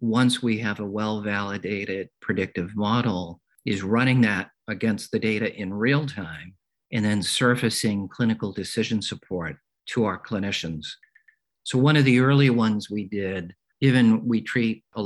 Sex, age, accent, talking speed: male, 50-69, American, 150 wpm